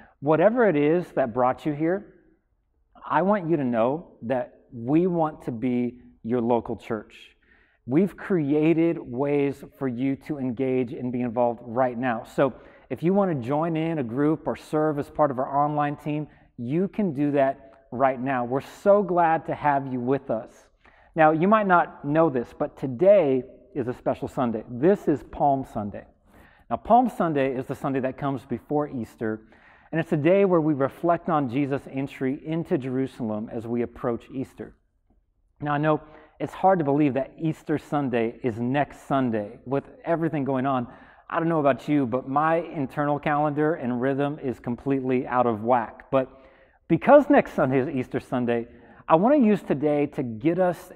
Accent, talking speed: American, 180 wpm